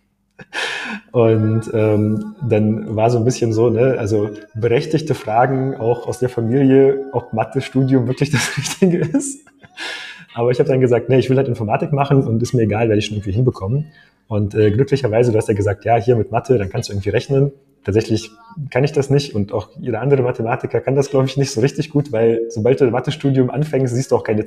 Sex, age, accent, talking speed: male, 30-49, German, 210 wpm